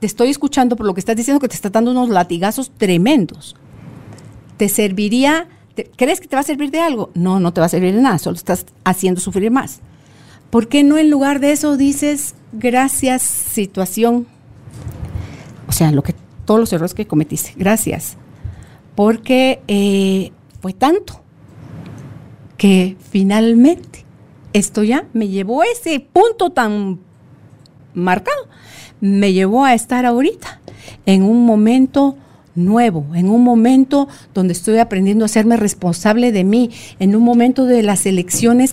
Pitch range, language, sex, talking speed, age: 190-255 Hz, Spanish, female, 155 wpm, 50-69